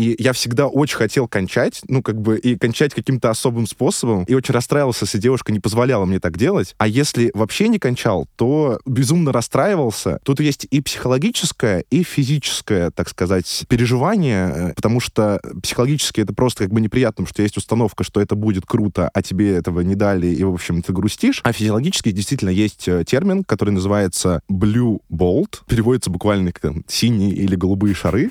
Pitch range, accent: 100-130 Hz, native